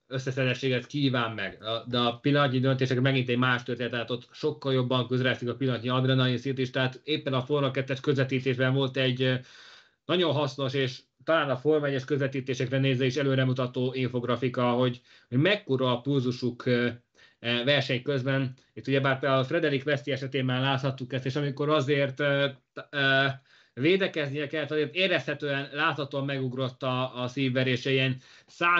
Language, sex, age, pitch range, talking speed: Hungarian, male, 20-39, 130-145 Hz, 140 wpm